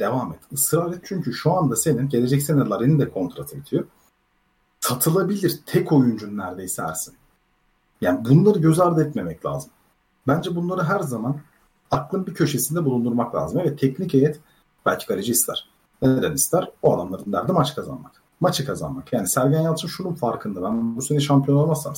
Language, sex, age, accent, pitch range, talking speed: Turkish, male, 40-59, native, 125-170 Hz, 160 wpm